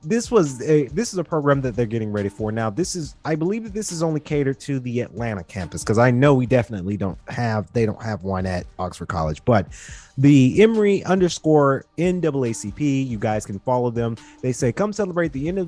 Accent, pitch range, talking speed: American, 110-145 Hz, 220 wpm